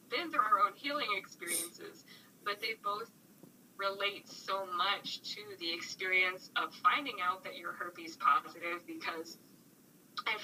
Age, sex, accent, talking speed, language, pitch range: 10-29, female, American, 140 wpm, English, 200-285 Hz